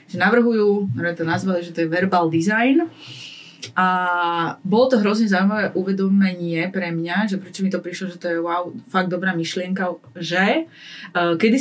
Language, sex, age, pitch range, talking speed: Slovak, female, 30-49, 165-190 Hz, 165 wpm